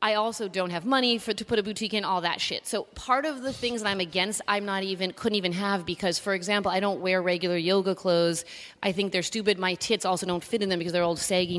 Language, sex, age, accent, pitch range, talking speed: English, female, 30-49, American, 180-210 Hz, 270 wpm